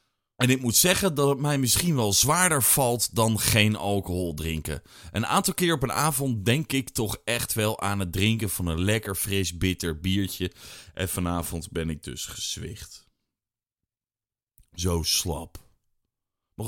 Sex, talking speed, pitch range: male, 160 wpm, 100-155 Hz